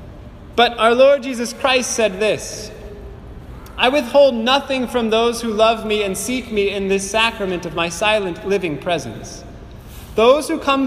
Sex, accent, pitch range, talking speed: male, American, 200-255 Hz, 160 wpm